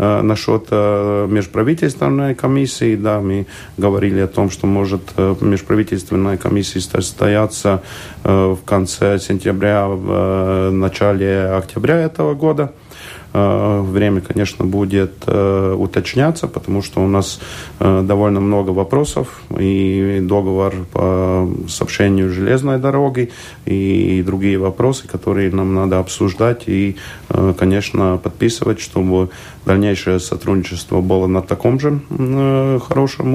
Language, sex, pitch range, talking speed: Russian, male, 95-105 Hz, 110 wpm